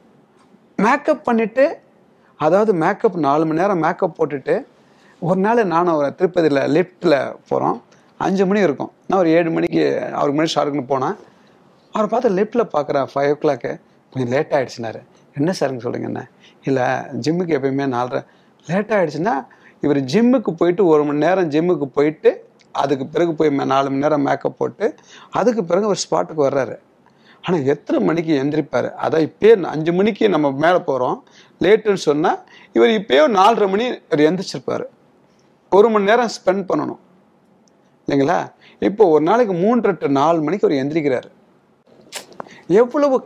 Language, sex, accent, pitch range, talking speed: Tamil, male, native, 145-210 Hz, 135 wpm